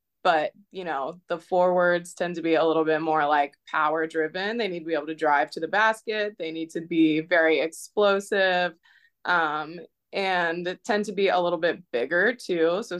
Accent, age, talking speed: American, 20-39, 200 wpm